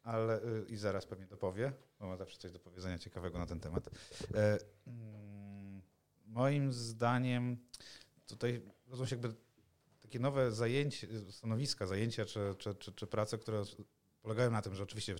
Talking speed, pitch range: 155 wpm, 100-120 Hz